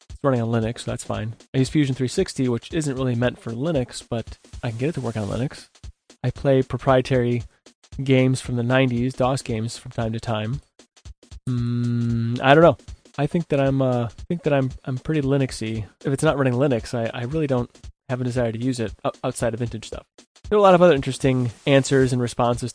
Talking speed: 220 wpm